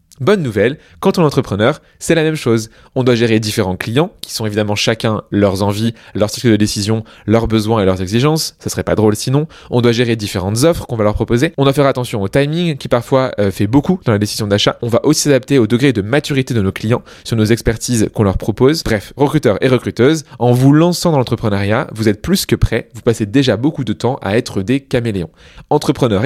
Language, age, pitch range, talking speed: French, 20-39, 105-140 Hz, 230 wpm